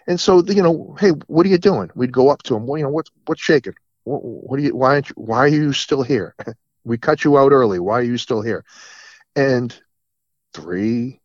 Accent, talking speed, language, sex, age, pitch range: American, 230 wpm, English, male, 40-59, 130-190 Hz